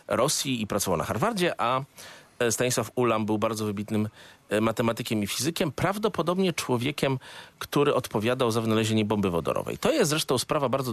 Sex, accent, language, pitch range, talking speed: male, native, Polish, 105-140 Hz, 150 wpm